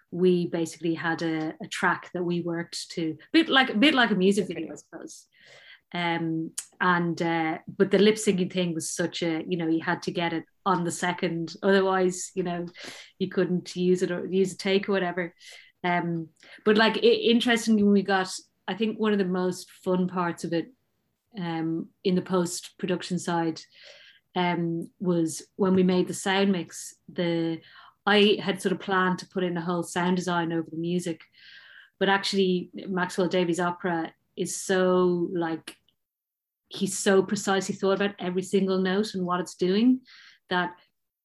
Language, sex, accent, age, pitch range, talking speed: English, female, Irish, 30-49, 175-195 Hz, 180 wpm